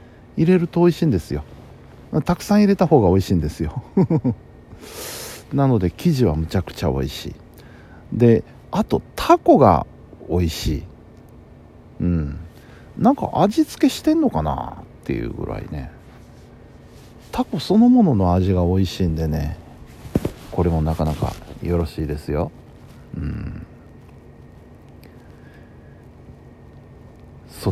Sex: male